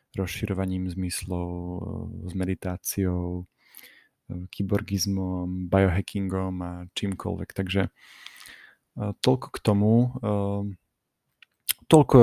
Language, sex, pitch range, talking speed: Slovak, male, 90-110 Hz, 65 wpm